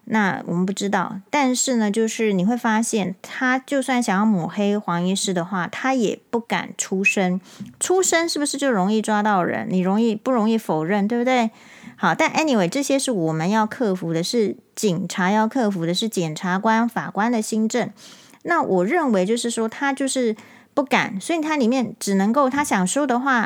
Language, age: Chinese, 30-49